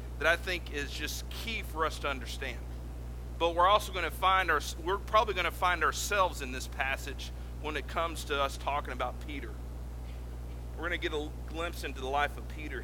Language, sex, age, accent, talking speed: English, male, 40-59, American, 195 wpm